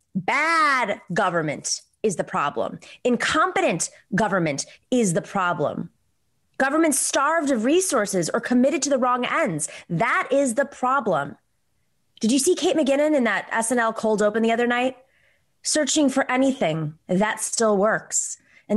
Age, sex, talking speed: 20-39, female, 140 wpm